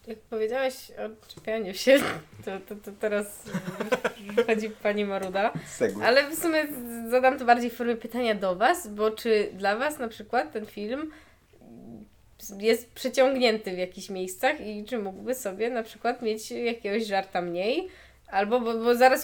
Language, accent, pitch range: Polish, native, 220-255 Hz